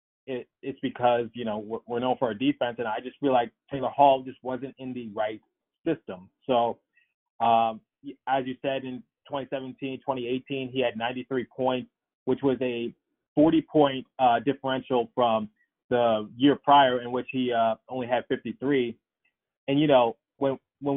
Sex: male